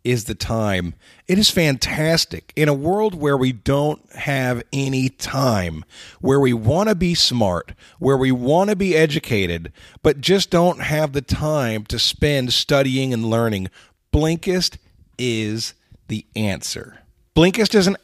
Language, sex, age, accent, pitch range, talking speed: English, male, 40-59, American, 115-160 Hz, 150 wpm